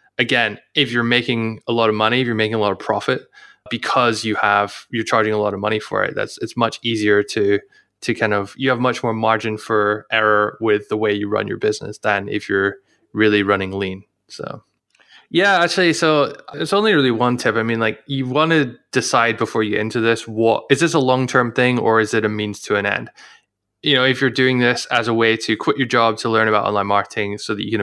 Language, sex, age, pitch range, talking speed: English, male, 20-39, 105-120 Hz, 240 wpm